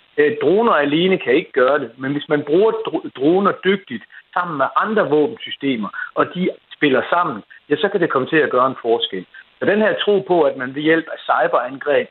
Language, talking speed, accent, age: Danish, 205 wpm, native, 60-79